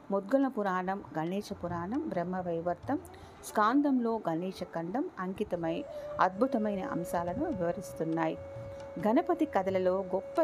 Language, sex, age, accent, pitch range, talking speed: Telugu, female, 40-59, native, 175-250 Hz, 75 wpm